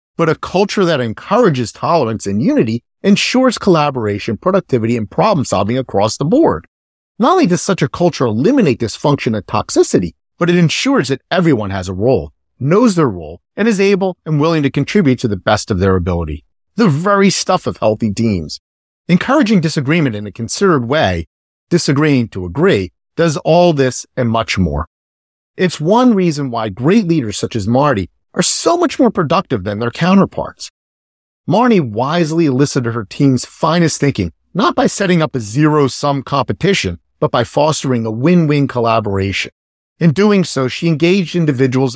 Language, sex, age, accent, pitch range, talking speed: English, male, 50-69, American, 110-175 Hz, 165 wpm